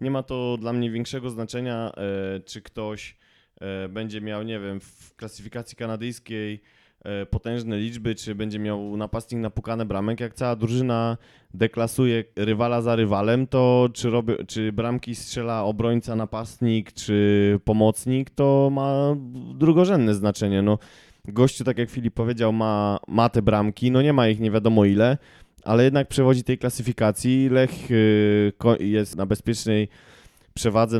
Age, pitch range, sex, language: 20-39, 110-135 Hz, male, Polish